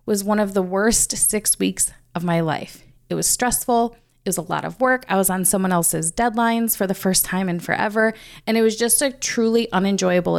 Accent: American